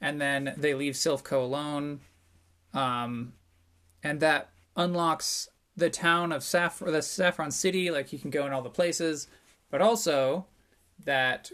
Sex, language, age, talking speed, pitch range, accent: male, English, 20-39, 150 wpm, 135-175 Hz, American